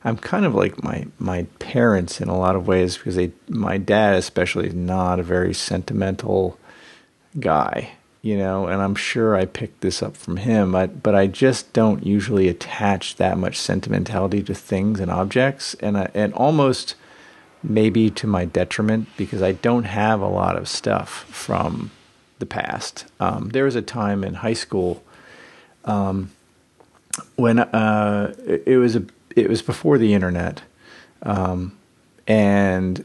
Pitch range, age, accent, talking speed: 95-110 Hz, 50-69, American, 160 wpm